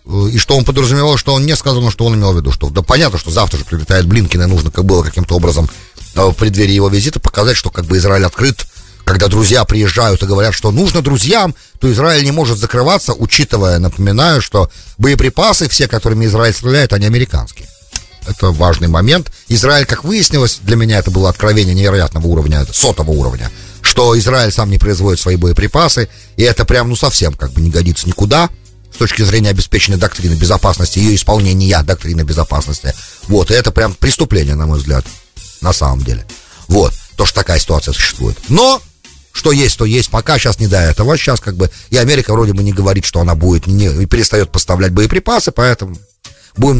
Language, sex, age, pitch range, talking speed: English, male, 40-59, 90-125 Hz, 190 wpm